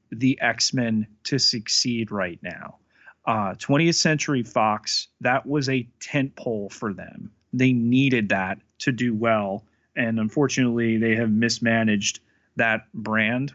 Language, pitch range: English, 110-135 Hz